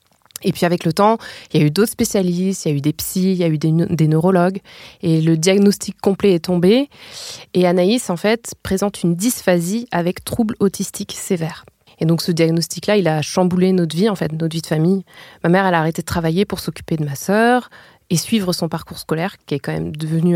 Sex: female